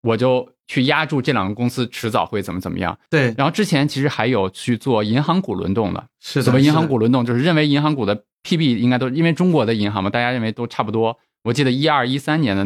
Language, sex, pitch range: Chinese, male, 105-135 Hz